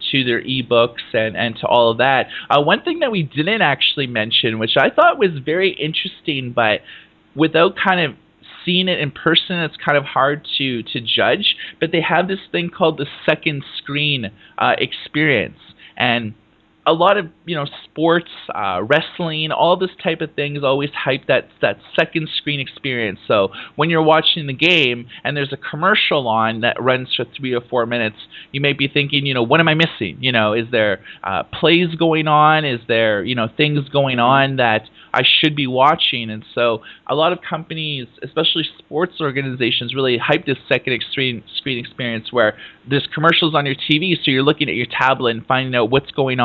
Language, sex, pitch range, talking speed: English, male, 120-160 Hz, 200 wpm